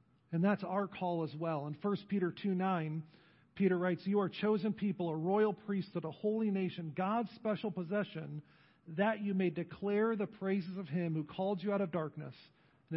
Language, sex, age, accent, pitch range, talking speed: English, male, 40-59, American, 155-195 Hz, 185 wpm